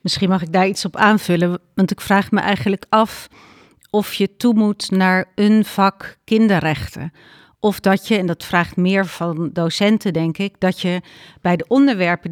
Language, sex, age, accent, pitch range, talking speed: Dutch, female, 40-59, Dutch, 180-205 Hz, 180 wpm